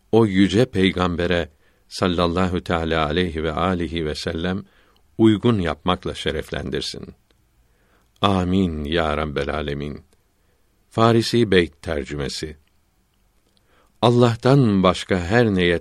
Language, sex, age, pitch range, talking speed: Turkish, male, 60-79, 90-105 Hz, 90 wpm